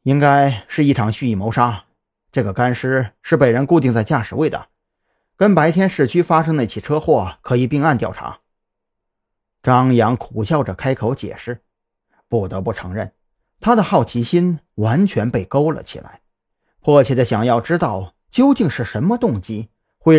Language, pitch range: Chinese, 110-155 Hz